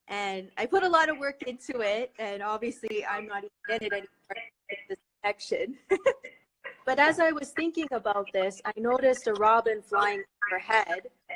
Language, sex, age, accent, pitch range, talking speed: English, female, 20-39, American, 210-260 Hz, 170 wpm